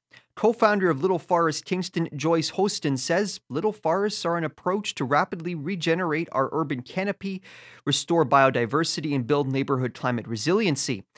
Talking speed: 140 wpm